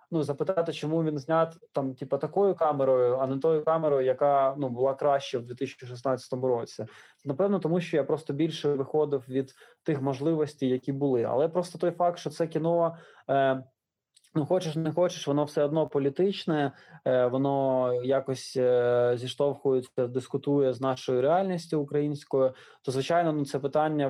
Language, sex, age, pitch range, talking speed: Ukrainian, male, 20-39, 130-155 Hz, 155 wpm